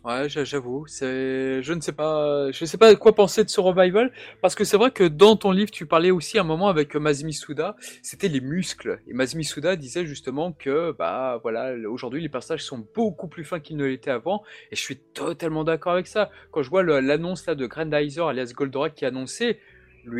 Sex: male